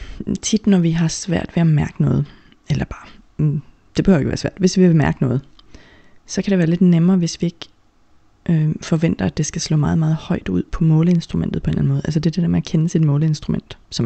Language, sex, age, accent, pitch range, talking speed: Danish, female, 30-49, native, 140-170 Hz, 250 wpm